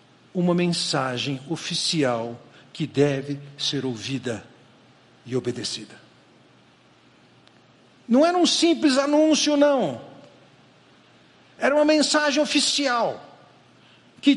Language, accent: Portuguese, Brazilian